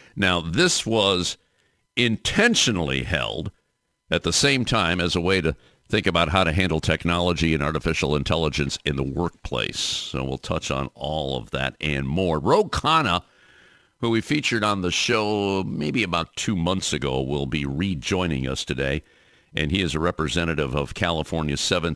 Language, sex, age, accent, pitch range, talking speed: English, male, 60-79, American, 80-105 Hz, 160 wpm